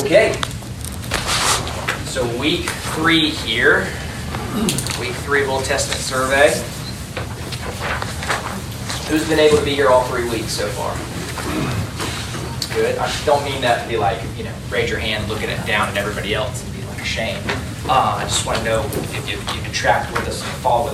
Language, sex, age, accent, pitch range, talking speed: English, male, 20-39, American, 115-145 Hz, 180 wpm